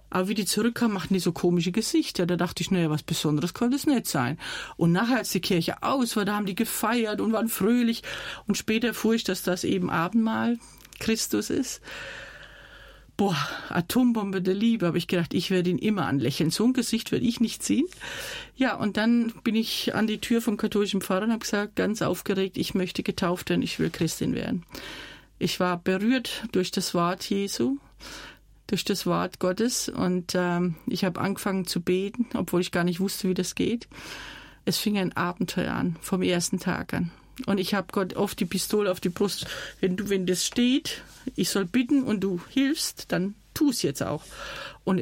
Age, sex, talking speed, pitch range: 40-59, female, 195 wpm, 180-225 Hz